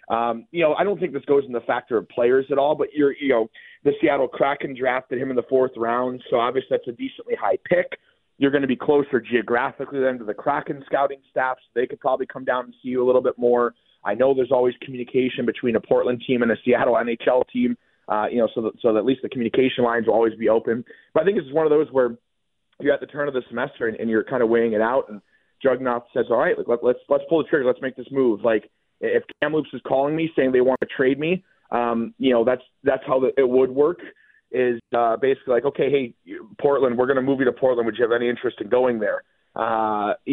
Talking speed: 250 wpm